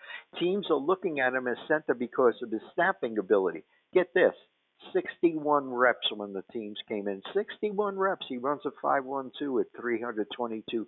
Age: 60-79